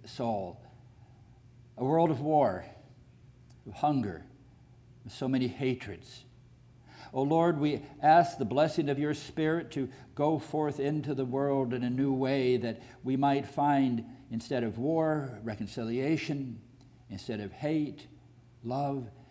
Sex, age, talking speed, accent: male, 60-79, 125 wpm, American